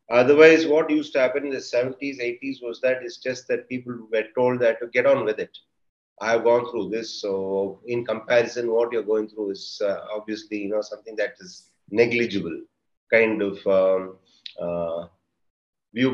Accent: native